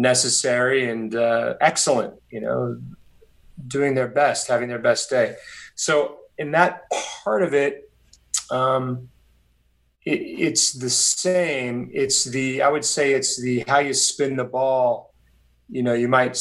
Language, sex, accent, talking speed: English, male, American, 145 wpm